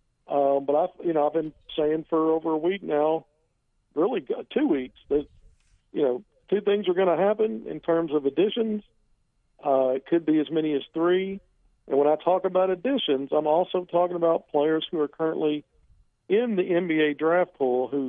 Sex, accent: male, American